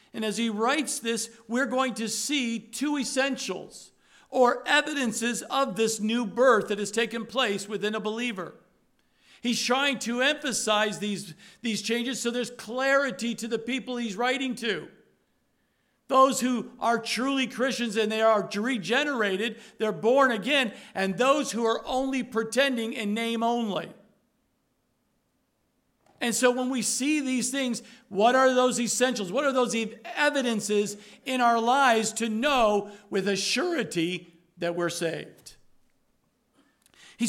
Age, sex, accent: 50-69, male, American